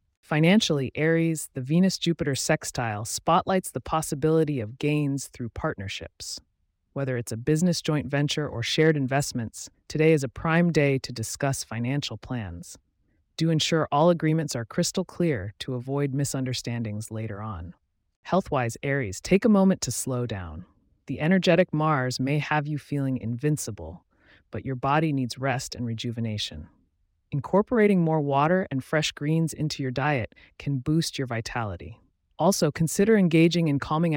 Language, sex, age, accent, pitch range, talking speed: English, female, 30-49, American, 115-160 Hz, 145 wpm